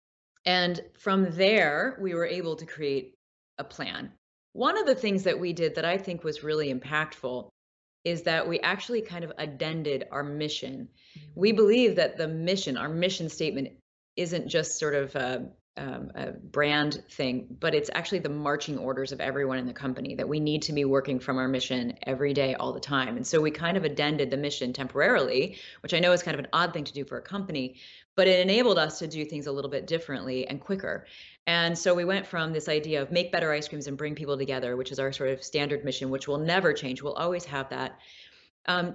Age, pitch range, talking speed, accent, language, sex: 30-49, 140-175 Hz, 215 wpm, American, English, female